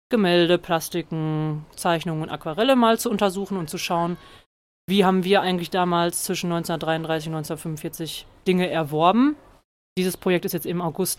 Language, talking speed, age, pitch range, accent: German, 150 wpm, 30-49, 170-200 Hz, German